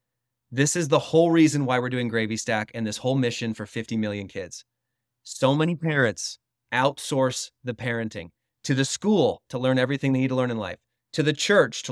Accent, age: American, 30-49